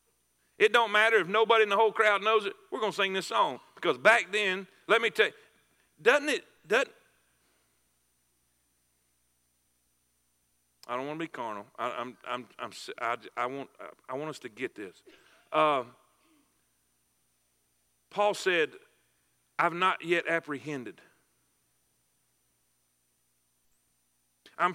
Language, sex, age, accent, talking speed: English, male, 50-69, American, 115 wpm